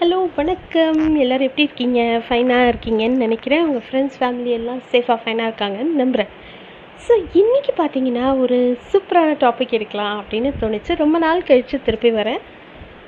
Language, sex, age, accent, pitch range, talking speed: Tamil, female, 30-49, native, 230-290 Hz, 140 wpm